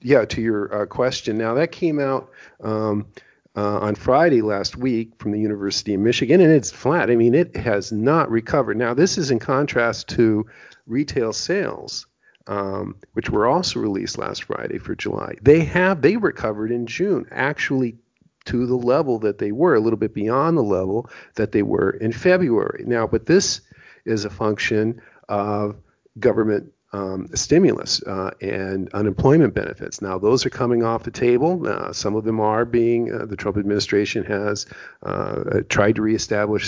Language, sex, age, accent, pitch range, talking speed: English, male, 50-69, American, 100-120 Hz, 175 wpm